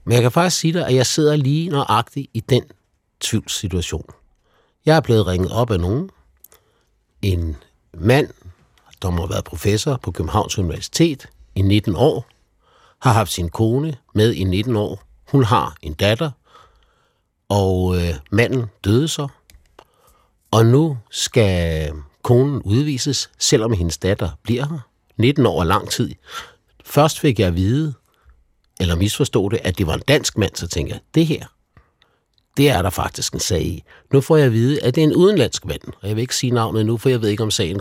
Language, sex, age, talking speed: Danish, male, 60-79, 180 wpm